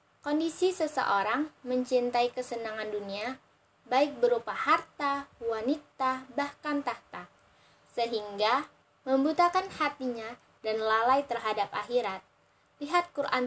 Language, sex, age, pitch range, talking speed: Indonesian, female, 10-29, 220-285 Hz, 90 wpm